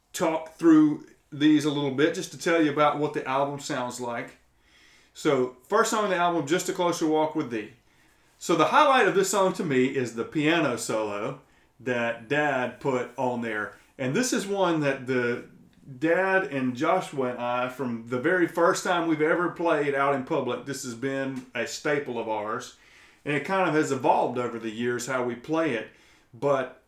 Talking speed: 195 wpm